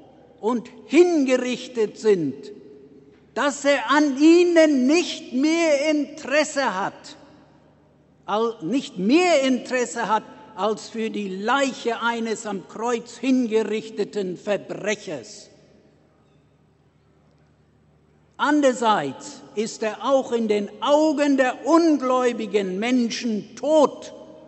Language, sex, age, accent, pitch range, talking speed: English, male, 60-79, German, 210-280 Hz, 85 wpm